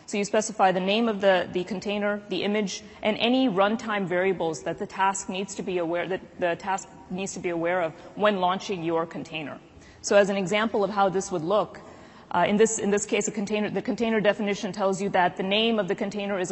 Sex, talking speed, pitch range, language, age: female, 230 wpm, 180-215 Hz, English, 30-49